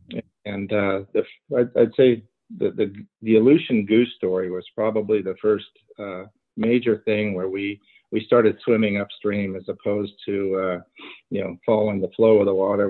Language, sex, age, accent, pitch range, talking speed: English, male, 50-69, American, 100-115 Hz, 170 wpm